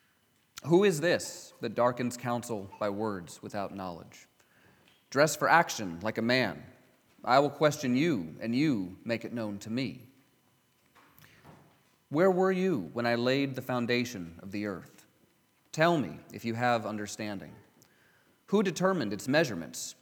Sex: male